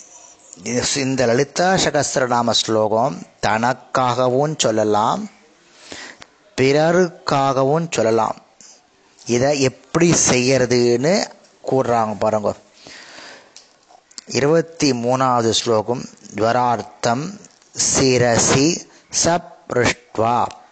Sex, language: male, Tamil